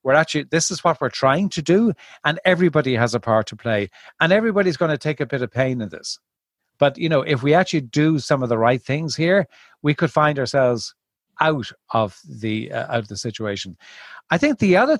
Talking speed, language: 225 wpm, English